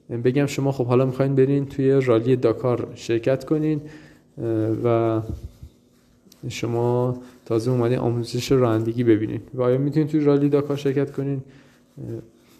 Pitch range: 120-140 Hz